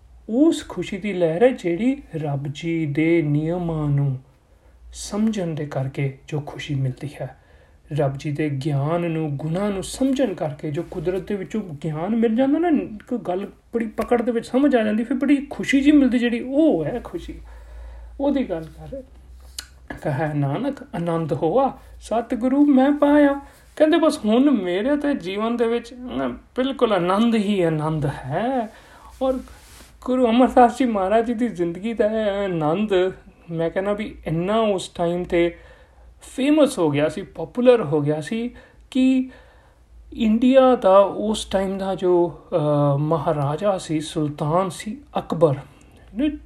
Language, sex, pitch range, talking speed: Punjabi, male, 155-240 Hz, 130 wpm